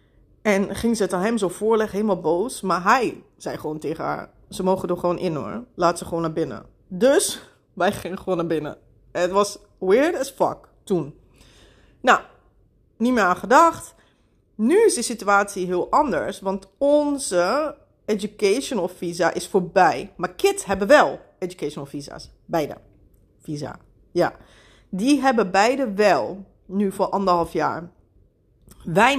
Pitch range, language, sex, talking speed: 180-230 Hz, Dutch, female, 150 wpm